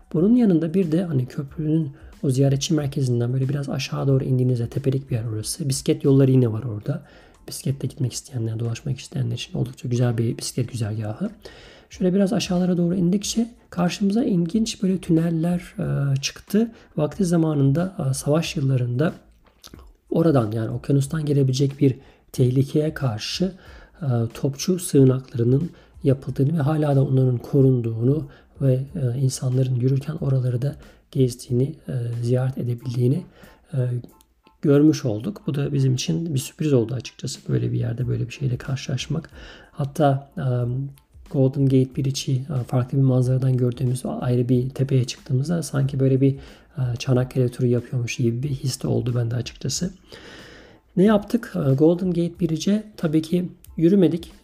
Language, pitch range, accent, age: Turkish, 125-160 Hz, native, 40-59